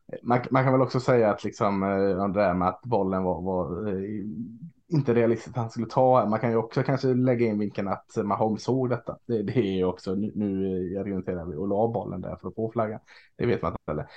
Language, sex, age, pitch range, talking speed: Swedish, male, 20-39, 105-135 Hz, 220 wpm